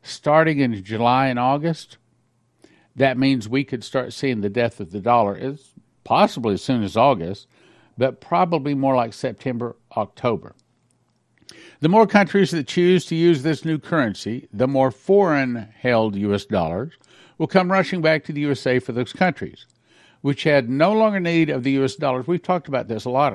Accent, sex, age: American, male, 60-79